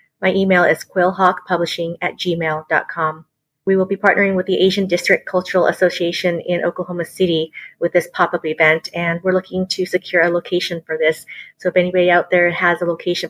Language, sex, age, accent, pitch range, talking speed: English, female, 30-49, American, 175-200 Hz, 180 wpm